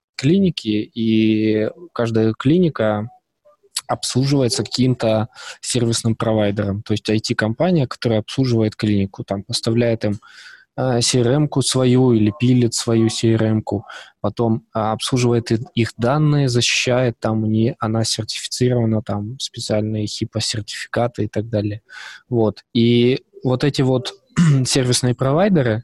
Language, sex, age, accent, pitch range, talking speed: Russian, male, 20-39, native, 110-130 Hz, 105 wpm